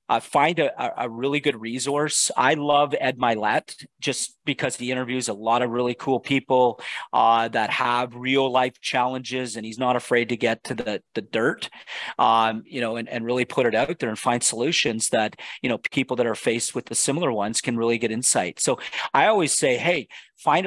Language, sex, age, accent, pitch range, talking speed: English, male, 40-59, American, 120-145 Hz, 205 wpm